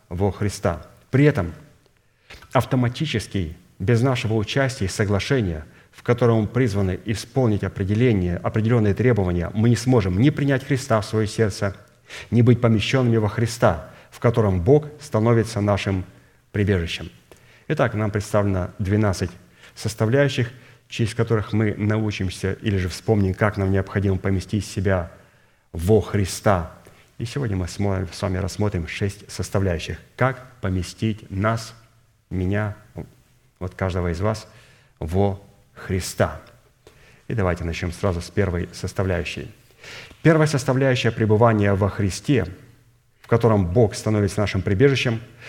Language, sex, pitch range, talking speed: Russian, male, 95-120 Hz, 120 wpm